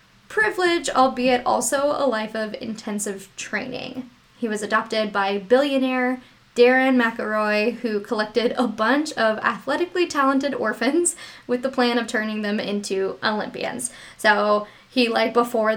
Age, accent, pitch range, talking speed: 10-29, American, 215-265 Hz, 135 wpm